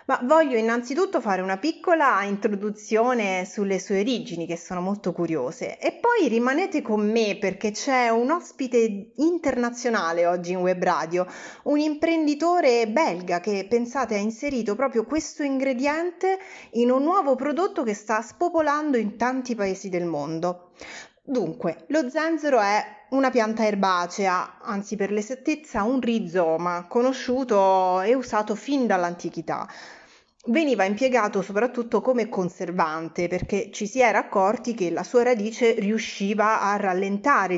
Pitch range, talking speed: 185-255 Hz, 135 wpm